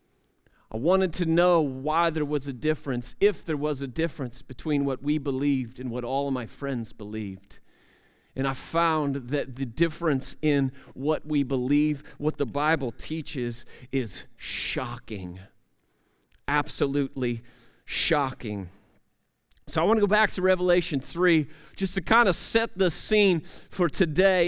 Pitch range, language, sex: 150-215 Hz, English, male